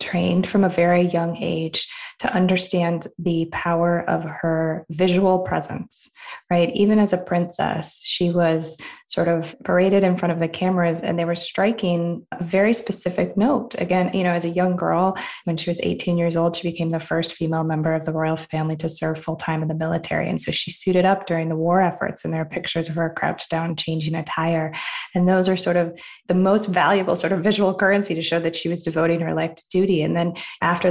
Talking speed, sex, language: 215 wpm, female, English